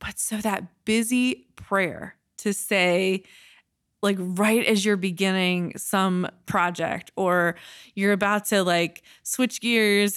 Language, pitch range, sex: English, 170-205 Hz, female